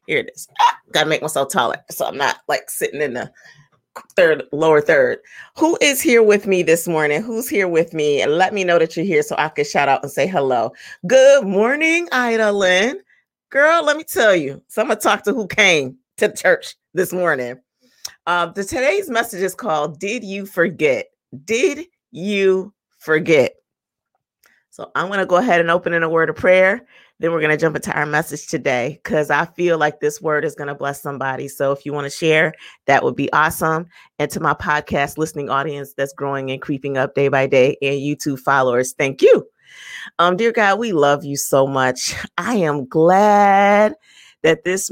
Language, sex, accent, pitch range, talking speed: English, female, American, 150-210 Hz, 200 wpm